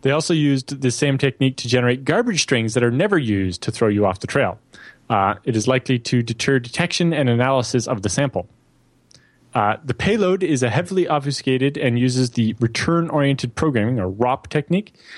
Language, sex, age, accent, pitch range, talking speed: English, male, 20-39, American, 120-150 Hz, 180 wpm